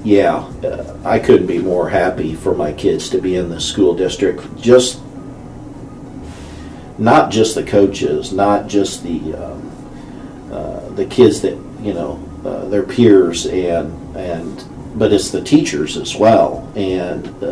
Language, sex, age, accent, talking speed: English, male, 50-69, American, 145 wpm